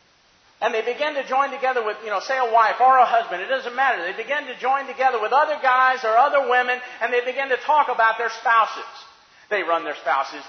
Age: 50-69